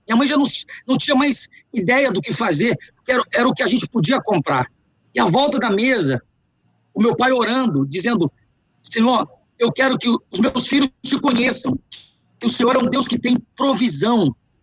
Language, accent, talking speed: Portuguese, Brazilian, 195 wpm